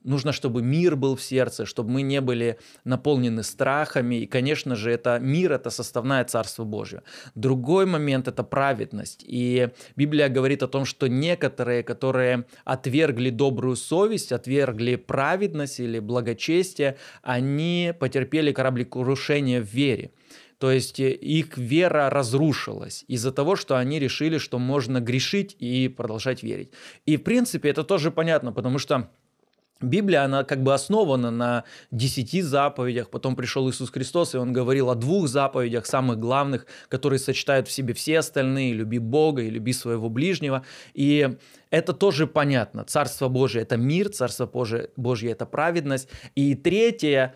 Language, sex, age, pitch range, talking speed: Russian, male, 20-39, 125-145 Hz, 150 wpm